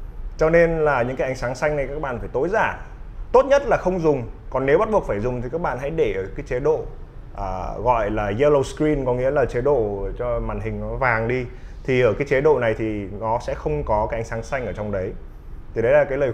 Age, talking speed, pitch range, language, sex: 20-39, 270 wpm, 110-150 Hz, Vietnamese, male